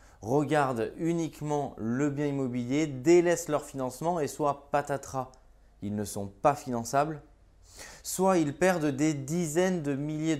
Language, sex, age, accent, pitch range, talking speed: French, male, 20-39, French, 120-155 Hz, 135 wpm